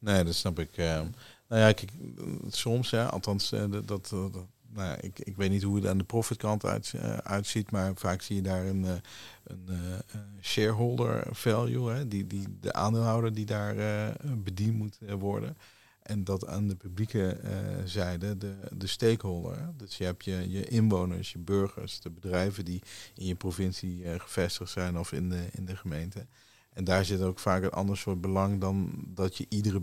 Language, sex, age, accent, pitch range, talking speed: Dutch, male, 50-69, Dutch, 95-110 Hz, 170 wpm